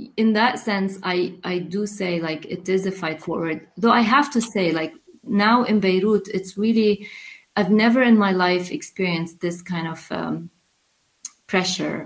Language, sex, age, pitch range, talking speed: English, female, 30-49, 165-195 Hz, 175 wpm